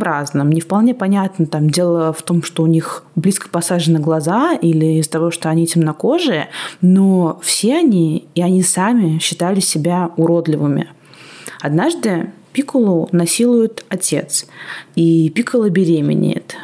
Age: 20-39